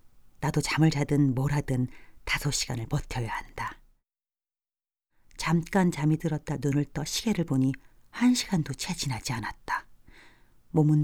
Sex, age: female, 40-59